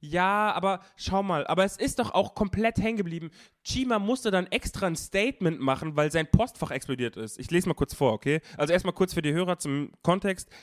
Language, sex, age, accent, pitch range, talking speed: German, male, 20-39, German, 130-170 Hz, 215 wpm